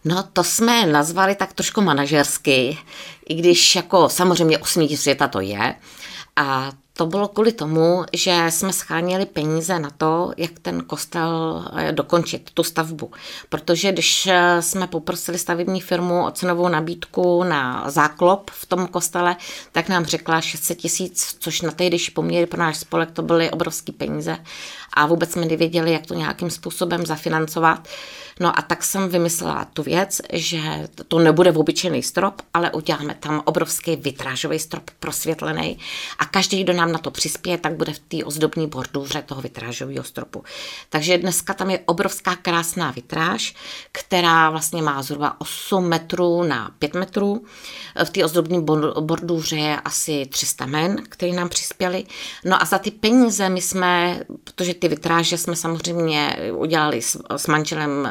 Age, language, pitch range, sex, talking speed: 20-39, Czech, 155-180 Hz, female, 155 wpm